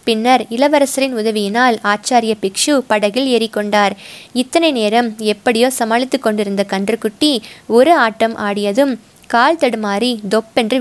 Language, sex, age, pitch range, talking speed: Tamil, female, 20-39, 205-240 Hz, 110 wpm